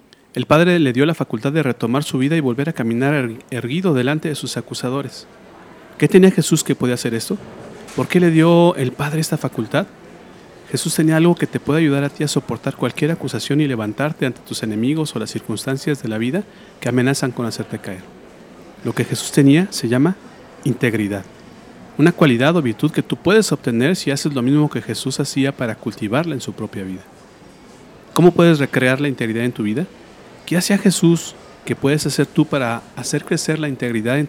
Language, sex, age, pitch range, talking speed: Spanish, male, 40-59, 120-155 Hz, 200 wpm